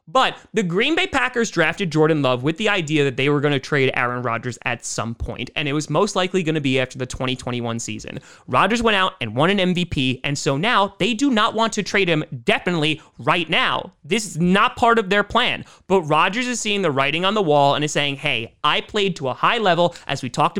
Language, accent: English, American